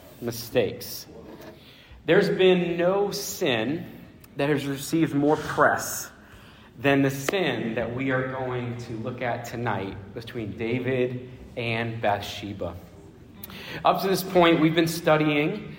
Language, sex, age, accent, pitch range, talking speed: English, male, 40-59, American, 125-145 Hz, 120 wpm